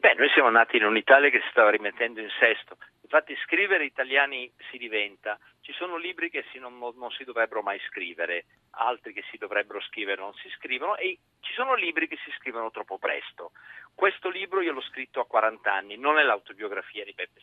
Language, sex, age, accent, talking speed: Italian, male, 40-59, native, 205 wpm